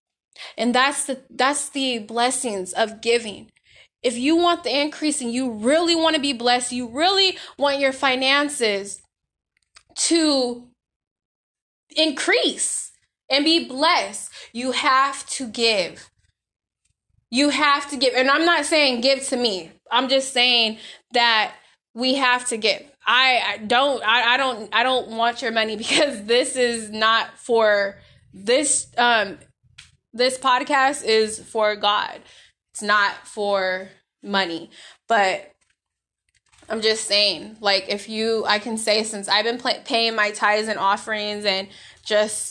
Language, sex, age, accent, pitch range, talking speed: English, female, 20-39, American, 210-260 Hz, 140 wpm